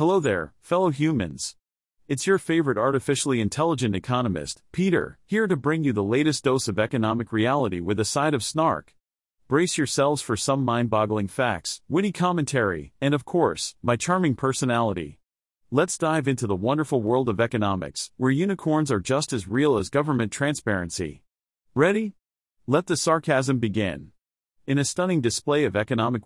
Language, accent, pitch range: English, American, 110-150 Hz